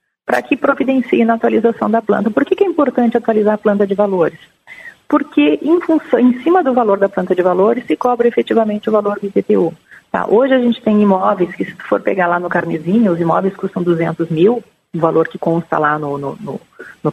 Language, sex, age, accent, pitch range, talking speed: Portuguese, female, 40-59, Brazilian, 190-245 Hz, 210 wpm